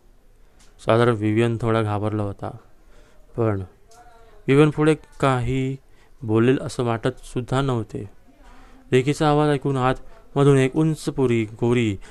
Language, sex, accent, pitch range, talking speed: Marathi, male, native, 110-135 Hz, 105 wpm